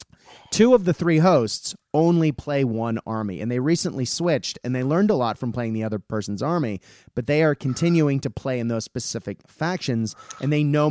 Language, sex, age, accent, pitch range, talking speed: English, male, 30-49, American, 115-155 Hz, 205 wpm